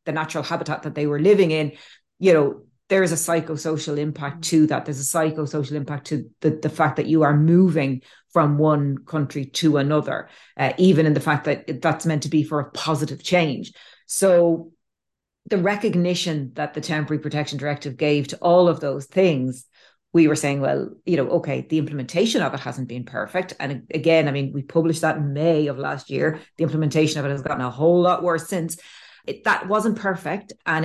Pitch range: 145-170 Hz